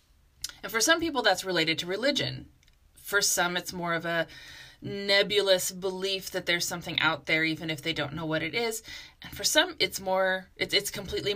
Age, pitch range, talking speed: 20-39, 165-210 Hz, 195 wpm